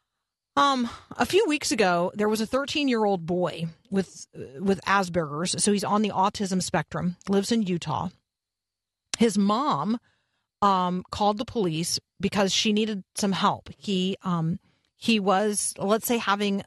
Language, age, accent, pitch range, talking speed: English, 40-59, American, 175-215 Hz, 145 wpm